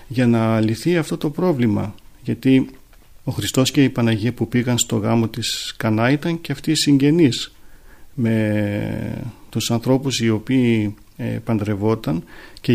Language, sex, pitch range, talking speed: Greek, male, 110-135 Hz, 140 wpm